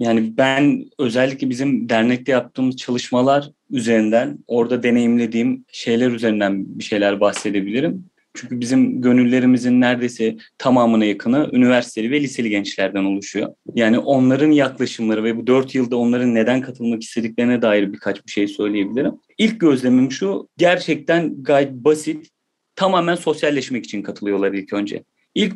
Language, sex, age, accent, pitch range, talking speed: Turkish, male, 30-49, native, 120-160 Hz, 130 wpm